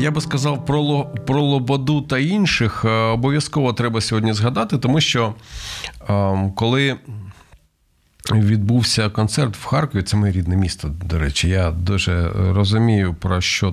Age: 40-59